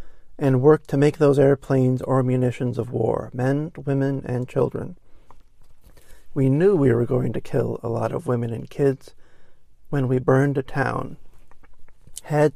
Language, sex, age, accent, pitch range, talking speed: English, male, 50-69, American, 125-140 Hz, 160 wpm